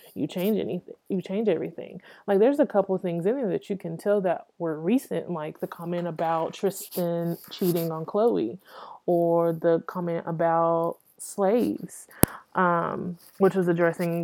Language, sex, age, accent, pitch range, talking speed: English, female, 20-39, American, 170-200 Hz, 155 wpm